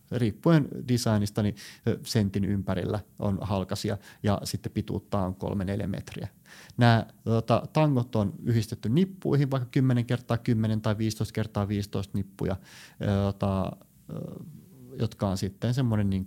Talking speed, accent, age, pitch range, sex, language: 120 wpm, native, 30-49, 100-120 Hz, male, Finnish